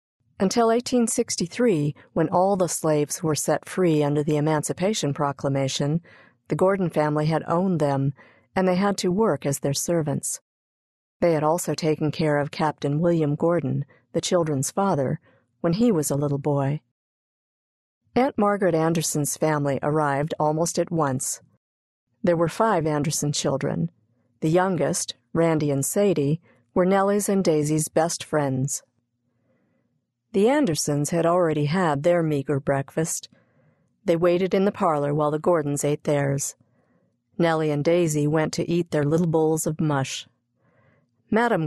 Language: English